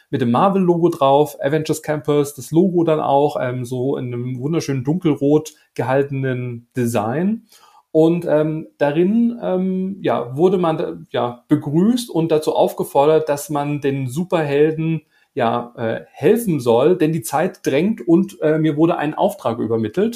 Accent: German